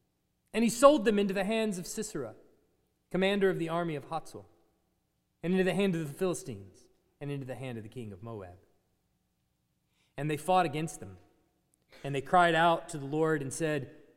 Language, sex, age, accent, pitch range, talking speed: English, male, 30-49, American, 135-205 Hz, 190 wpm